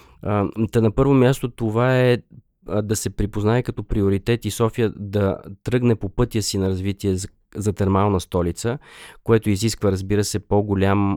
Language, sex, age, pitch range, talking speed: Bulgarian, male, 20-39, 100-115 Hz, 145 wpm